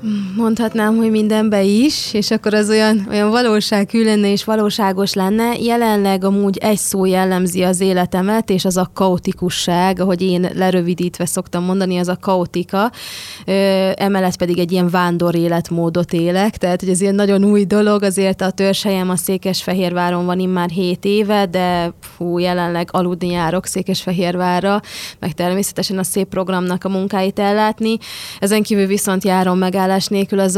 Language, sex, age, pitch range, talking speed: Hungarian, female, 20-39, 180-205 Hz, 150 wpm